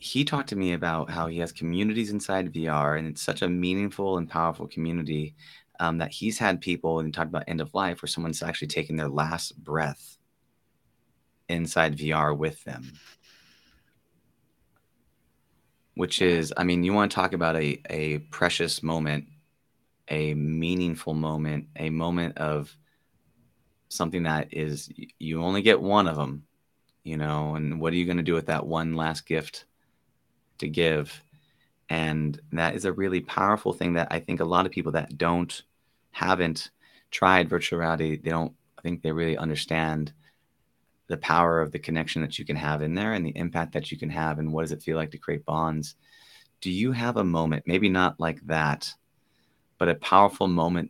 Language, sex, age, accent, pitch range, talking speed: English, male, 30-49, American, 75-85 Hz, 180 wpm